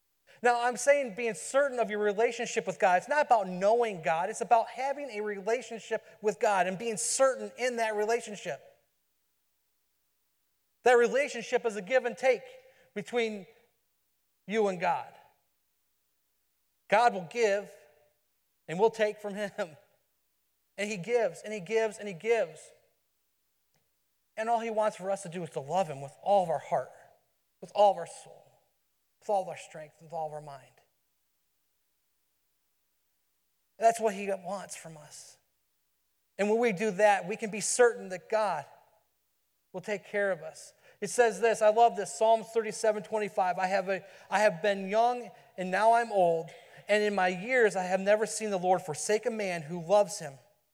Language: English